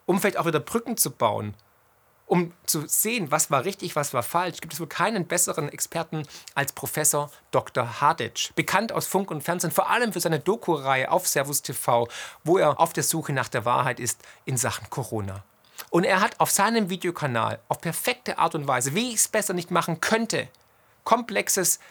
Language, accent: German, German